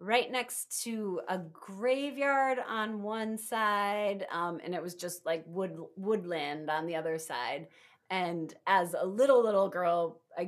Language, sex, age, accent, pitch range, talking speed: English, female, 30-49, American, 175-235 Hz, 150 wpm